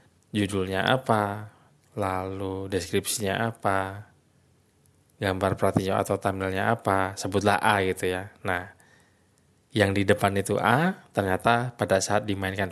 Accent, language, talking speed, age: native, Indonesian, 115 wpm, 20-39